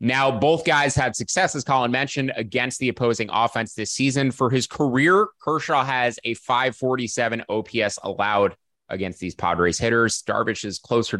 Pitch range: 100-130 Hz